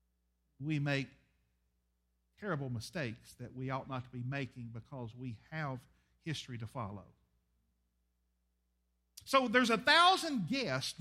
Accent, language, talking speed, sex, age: American, English, 120 wpm, male, 50-69